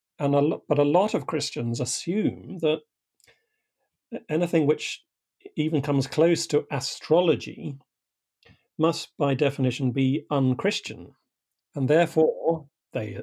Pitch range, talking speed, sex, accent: 130-160 Hz, 110 wpm, male, British